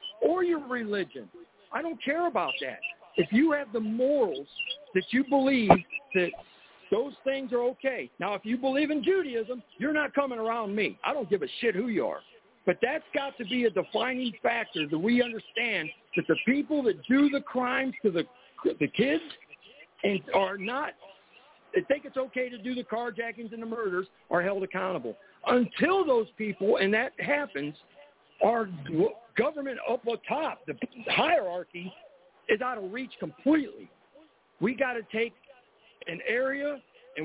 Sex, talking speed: male, 170 wpm